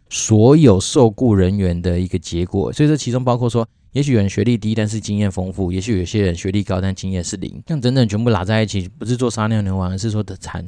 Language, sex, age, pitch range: Chinese, male, 20-39, 90-115 Hz